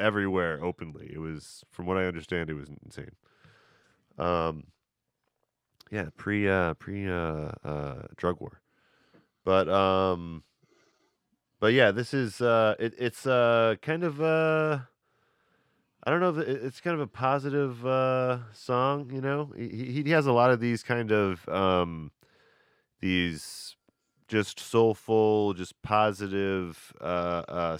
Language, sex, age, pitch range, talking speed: English, male, 30-49, 80-115 Hz, 140 wpm